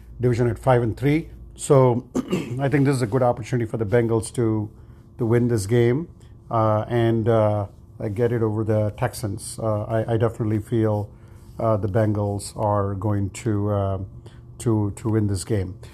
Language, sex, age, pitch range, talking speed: English, male, 50-69, 110-120 Hz, 175 wpm